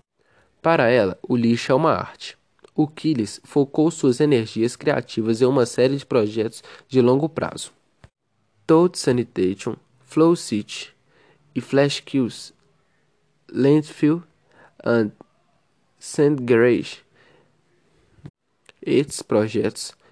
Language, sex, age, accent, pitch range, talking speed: Portuguese, male, 20-39, Brazilian, 115-140 Hz, 100 wpm